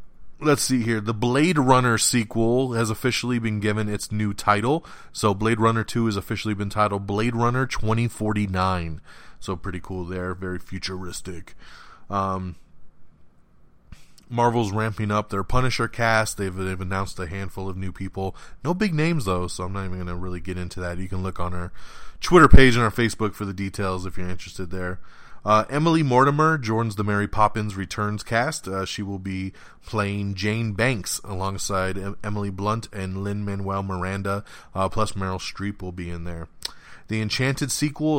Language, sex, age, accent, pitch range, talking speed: English, male, 20-39, American, 95-115 Hz, 175 wpm